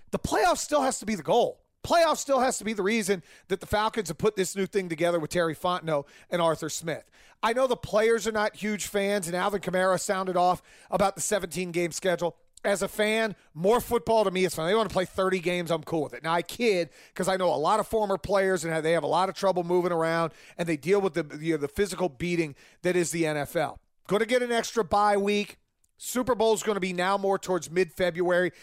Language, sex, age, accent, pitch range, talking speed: English, male, 30-49, American, 165-210 Hz, 245 wpm